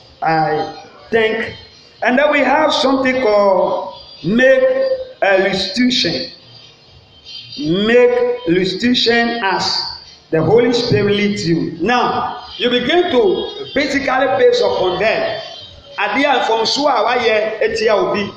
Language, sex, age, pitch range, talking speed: English, male, 50-69, 210-340 Hz, 95 wpm